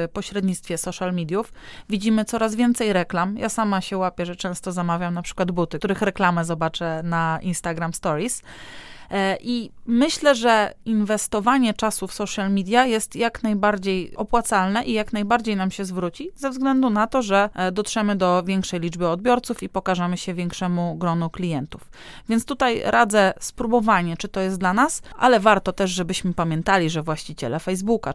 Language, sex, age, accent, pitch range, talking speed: Polish, female, 30-49, native, 175-220 Hz, 160 wpm